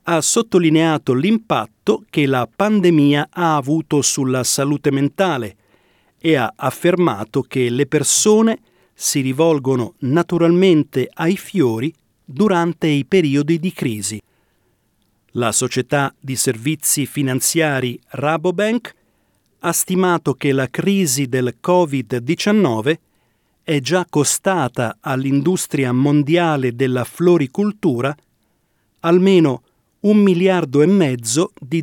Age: 40-59